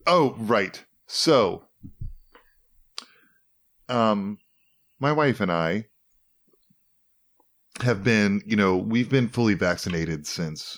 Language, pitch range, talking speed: English, 85-125 Hz, 95 wpm